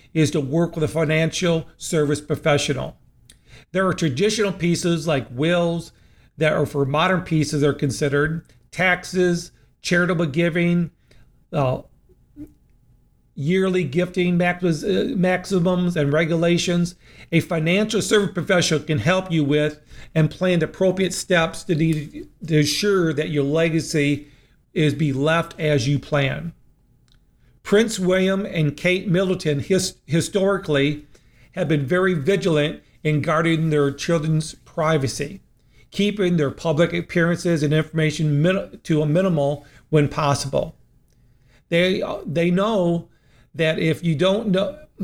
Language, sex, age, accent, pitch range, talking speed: English, male, 50-69, American, 150-180 Hz, 125 wpm